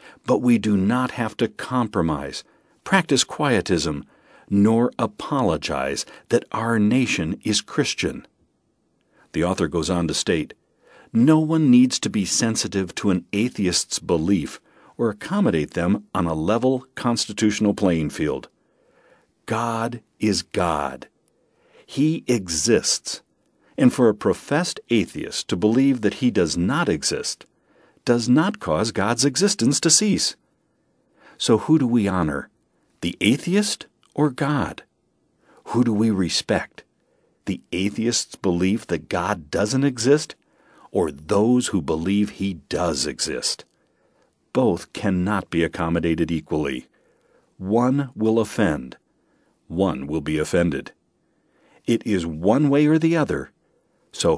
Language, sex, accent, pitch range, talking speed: English, male, American, 95-130 Hz, 125 wpm